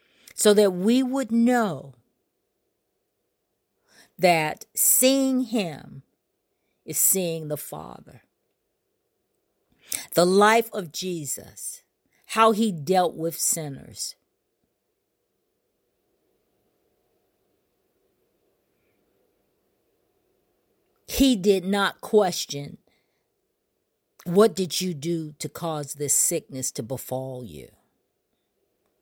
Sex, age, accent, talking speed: female, 50-69, American, 75 wpm